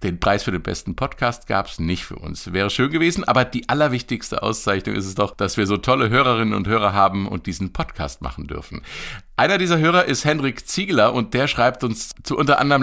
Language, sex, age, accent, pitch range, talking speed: German, male, 50-69, German, 95-125 Hz, 220 wpm